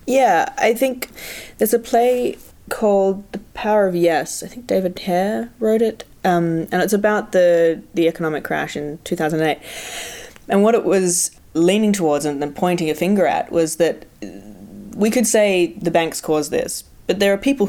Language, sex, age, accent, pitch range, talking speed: English, female, 20-39, Australian, 160-200 Hz, 175 wpm